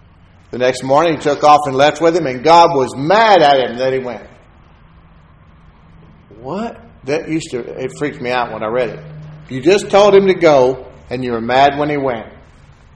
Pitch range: 110-140 Hz